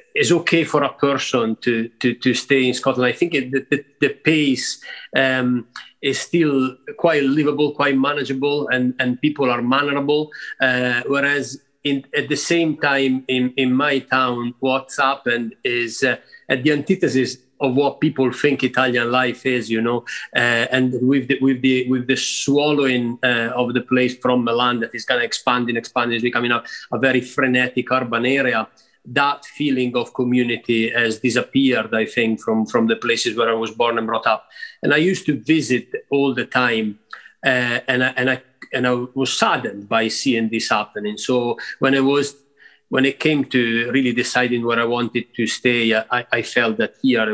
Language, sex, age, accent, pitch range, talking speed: English, male, 30-49, Italian, 120-140 Hz, 185 wpm